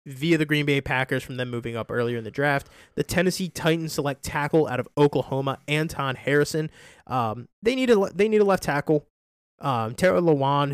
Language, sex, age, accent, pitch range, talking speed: English, male, 20-39, American, 120-150 Hz, 185 wpm